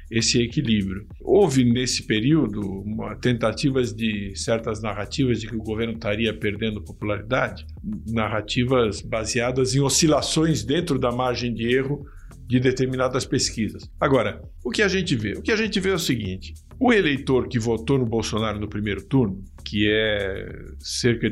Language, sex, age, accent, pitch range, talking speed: Portuguese, male, 60-79, Brazilian, 105-140 Hz, 150 wpm